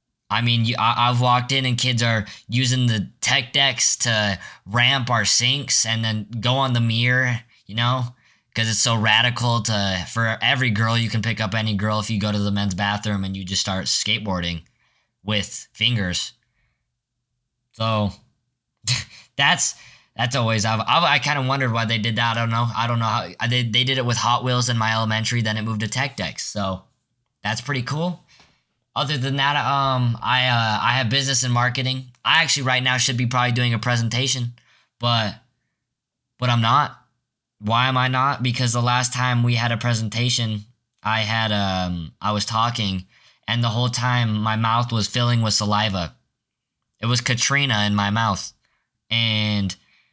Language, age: English, 10-29